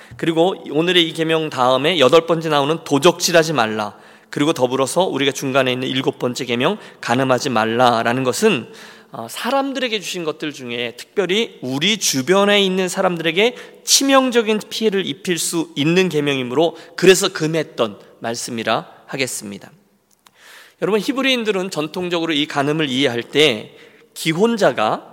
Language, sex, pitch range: Korean, male, 130-185 Hz